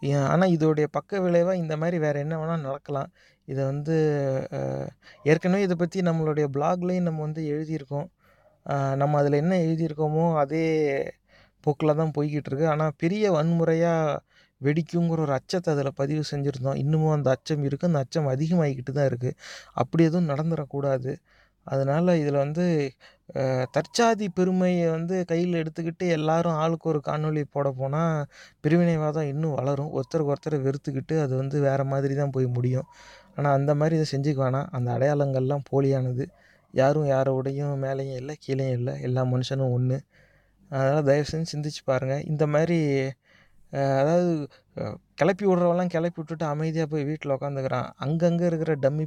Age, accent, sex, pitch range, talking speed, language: 30-49, native, male, 135-165 Hz, 135 wpm, Tamil